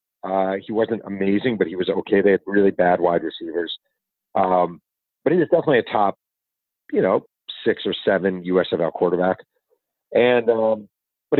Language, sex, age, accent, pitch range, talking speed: English, male, 40-59, American, 95-125 Hz, 165 wpm